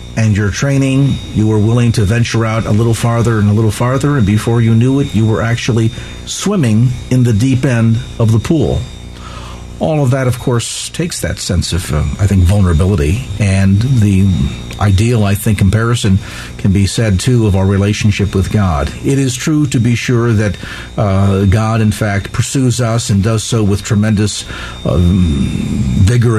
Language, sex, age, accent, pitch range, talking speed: English, male, 50-69, American, 95-120 Hz, 180 wpm